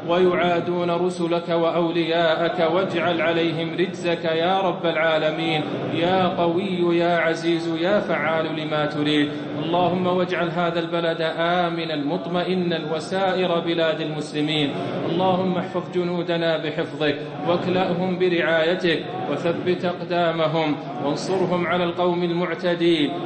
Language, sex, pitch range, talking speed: English, male, 155-175 Hz, 100 wpm